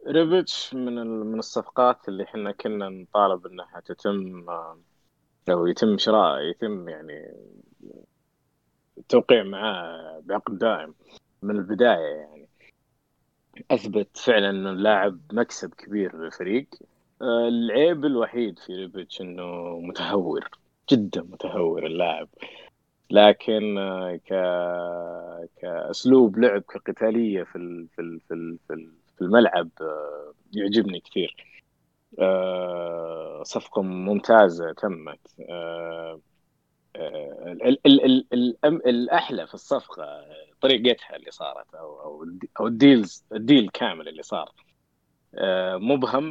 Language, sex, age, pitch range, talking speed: Arabic, male, 20-39, 90-120 Hz, 85 wpm